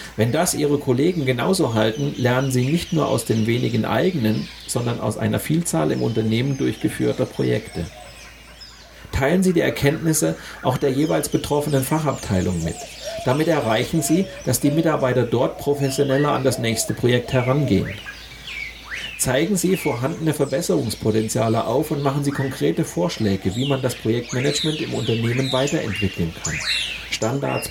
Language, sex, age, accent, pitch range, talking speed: German, male, 40-59, German, 110-145 Hz, 140 wpm